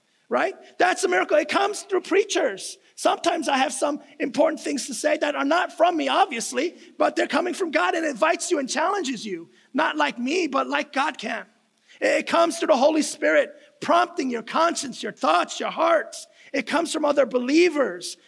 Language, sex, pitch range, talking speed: English, male, 240-310 Hz, 190 wpm